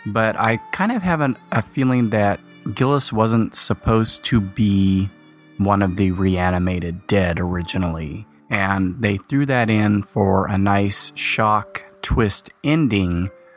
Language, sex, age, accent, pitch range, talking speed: English, male, 30-49, American, 95-115 Hz, 135 wpm